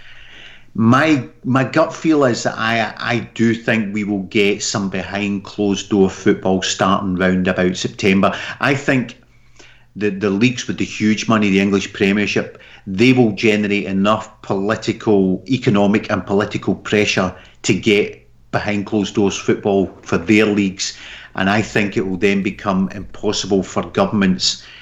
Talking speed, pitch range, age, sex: 150 wpm, 95-110 Hz, 40-59, male